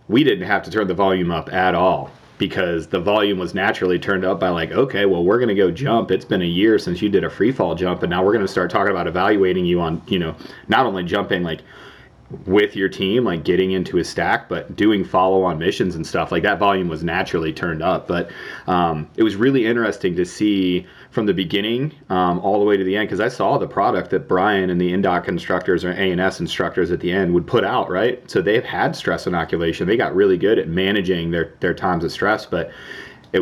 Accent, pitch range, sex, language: American, 85-100 Hz, male, English